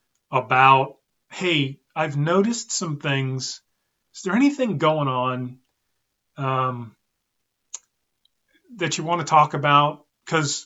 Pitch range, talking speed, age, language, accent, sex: 130-155 Hz, 105 wpm, 40-59, English, American, male